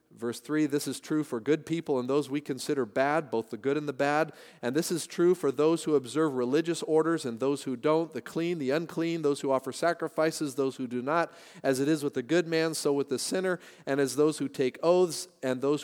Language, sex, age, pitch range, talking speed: English, male, 40-59, 130-165 Hz, 245 wpm